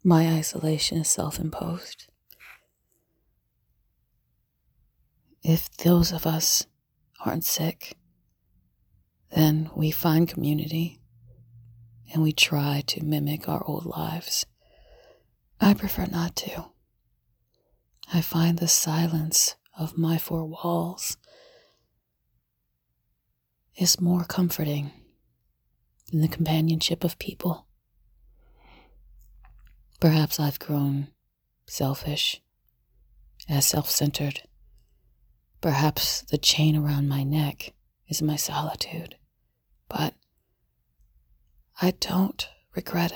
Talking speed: 85 wpm